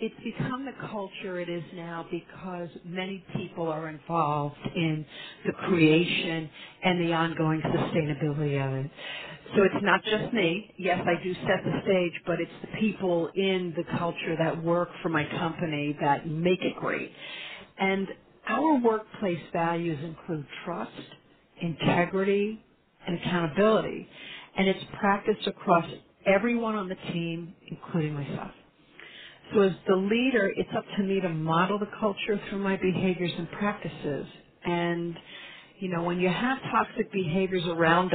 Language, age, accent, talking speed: English, 50-69, American, 145 wpm